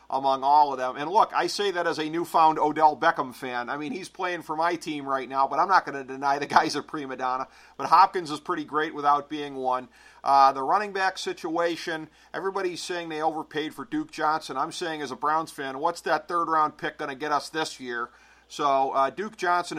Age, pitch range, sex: 40-59, 135-160 Hz, male